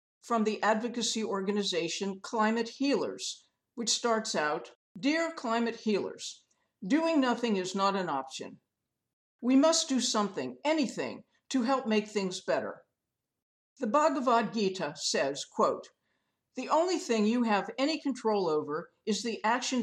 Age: 50-69